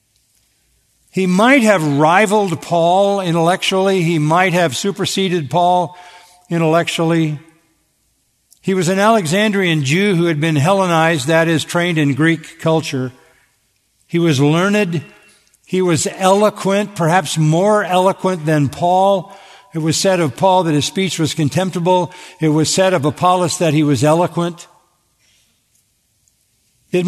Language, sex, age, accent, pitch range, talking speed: English, male, 60-79, American, 145-185 Hz, 130 wpm